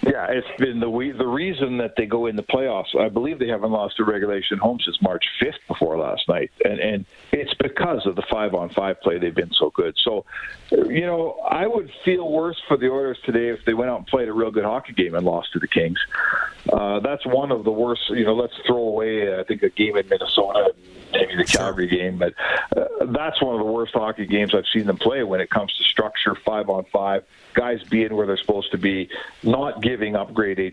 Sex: male